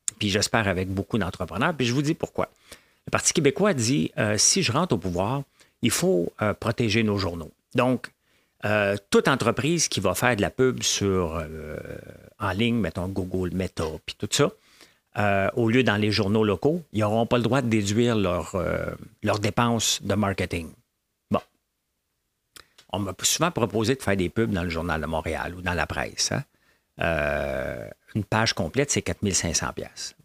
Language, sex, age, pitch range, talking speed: English, male, 50-69, 90-115 Hz, 185 wpm